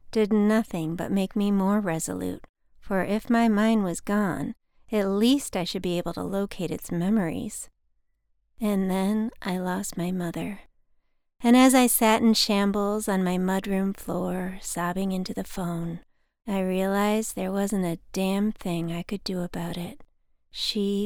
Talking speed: 160 wpm